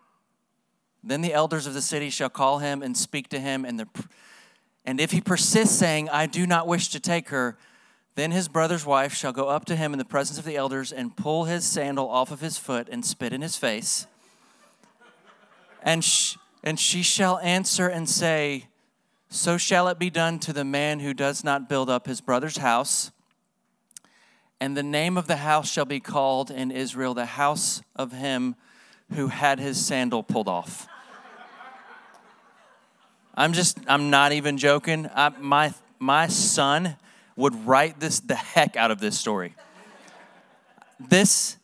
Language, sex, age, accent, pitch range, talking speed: English, male, 40-59, American, 140-185 Hz, 170 wpm